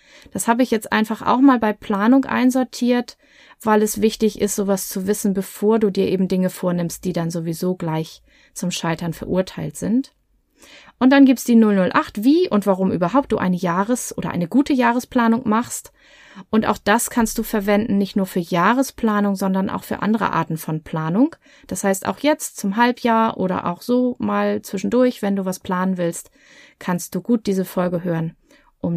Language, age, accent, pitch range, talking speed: German, 30-49, German, 190-240 Hz, 185 wpm